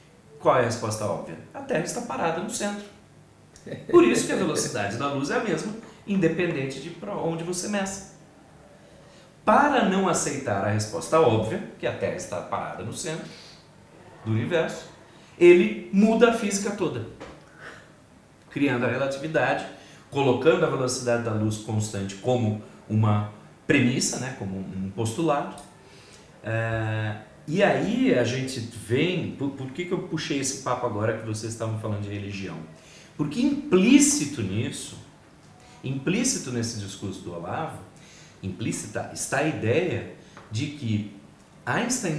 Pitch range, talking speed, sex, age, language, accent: 110-165 Hz, 140 wpm, male, 40-59, Portuguese, Brazilian